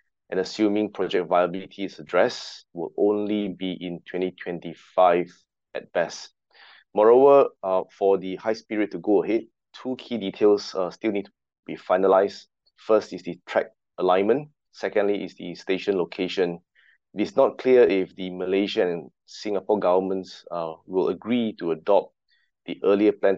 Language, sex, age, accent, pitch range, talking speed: English, male, 20-39, Malaysian, 90-110 Hz, 150 wpm